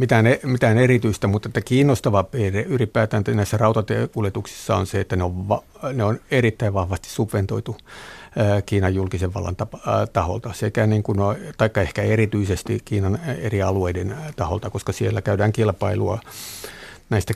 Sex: male